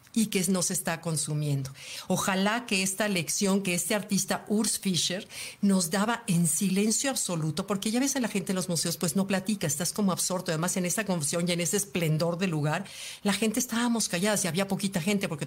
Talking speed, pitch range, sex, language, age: 205 wpm, 165-205 Hz, female, Spanish, 50-69